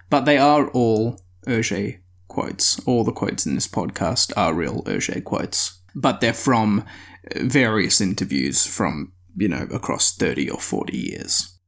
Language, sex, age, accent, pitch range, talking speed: English, male, 20-39, Australian, 95-125 Hz, 150 wpm